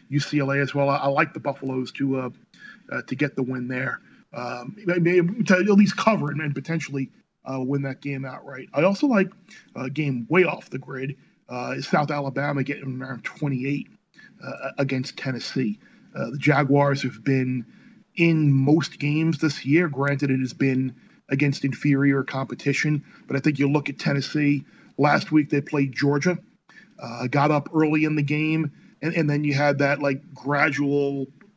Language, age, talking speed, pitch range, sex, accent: English, 40-59, 170 wpm, 140-170 Hz, male, American